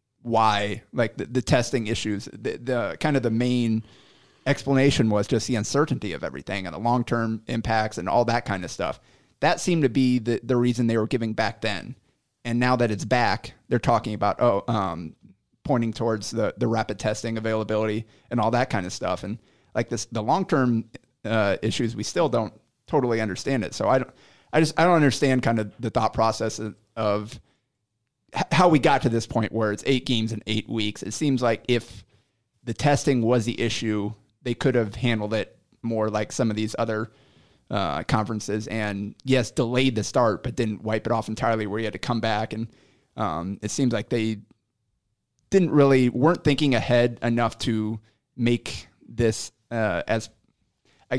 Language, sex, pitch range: English, male, 110-125 Hz